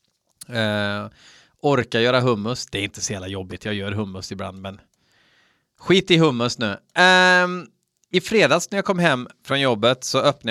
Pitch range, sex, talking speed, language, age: 110-145 Hz, male, 165 wpm, Swedish, 30-49